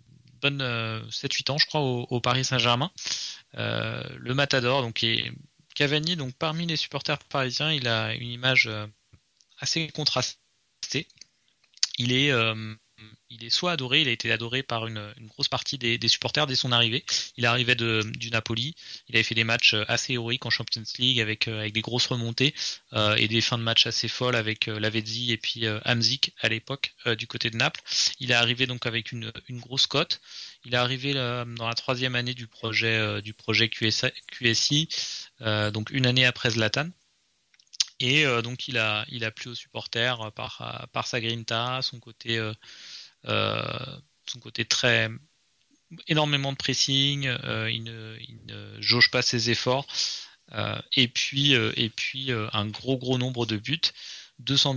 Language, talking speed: French, 180 wpm